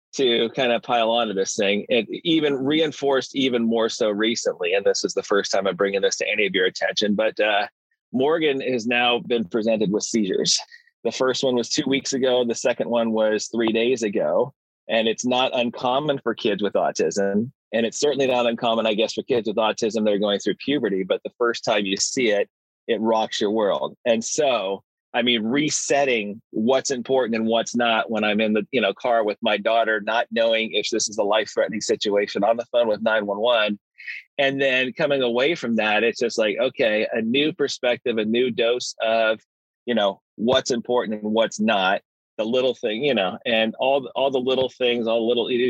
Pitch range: 110-130 Hz